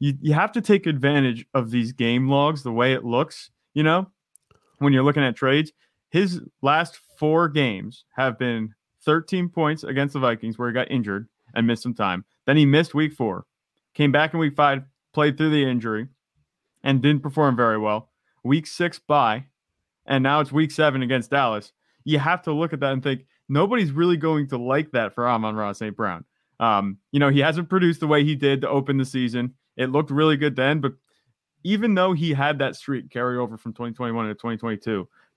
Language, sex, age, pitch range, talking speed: English, male, 30-49, 120-150 Hz, 200 wpm